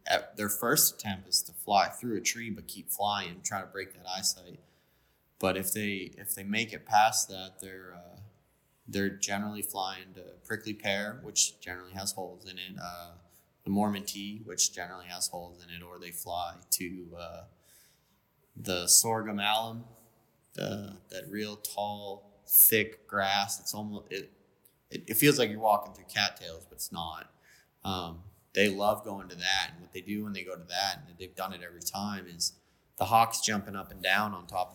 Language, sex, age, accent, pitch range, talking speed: English, male, 20-39, American, 90-105 Hz, 190 wpm